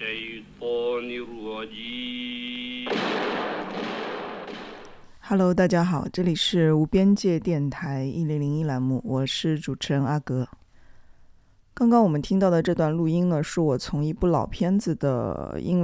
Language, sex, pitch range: Chinese, female, 135-175 Hz